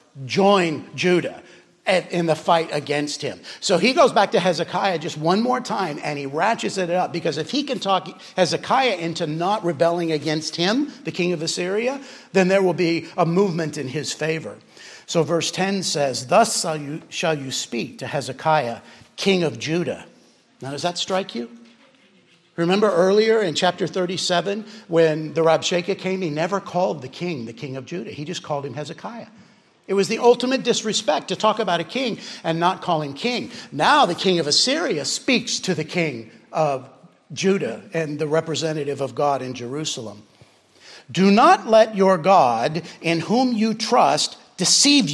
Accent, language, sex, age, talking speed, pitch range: American, English, male, 50-69, 175 wpm, 155-200 Hz